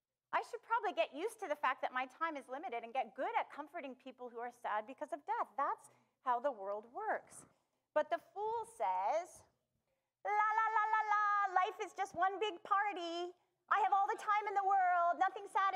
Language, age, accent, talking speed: English, 30-49, American, 210 wpm